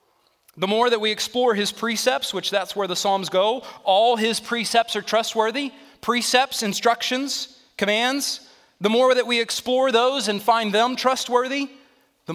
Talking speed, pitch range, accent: 155 wpm, 190-240 Hz, American